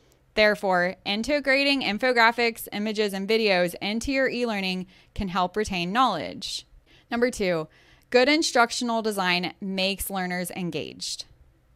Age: 20-39